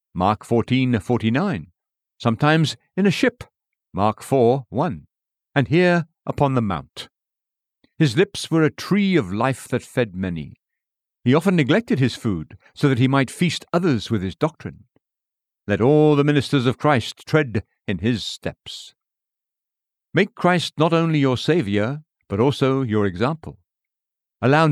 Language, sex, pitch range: English, male, 110-150 Hz